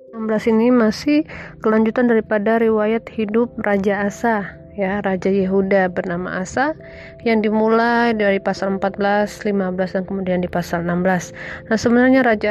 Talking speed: 135 wpm